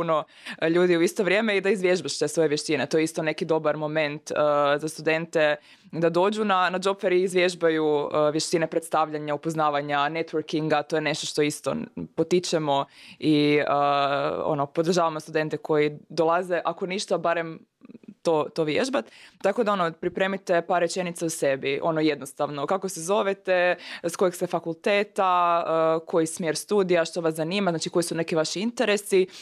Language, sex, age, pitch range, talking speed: Croatian, female, 20-39, 150-180 Hz, 160 wpm